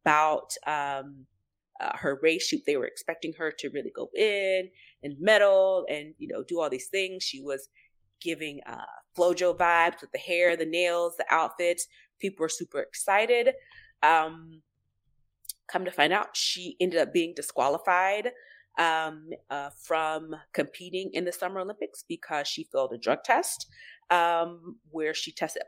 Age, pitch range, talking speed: 30-49, 155-205 Hz, 160 wpm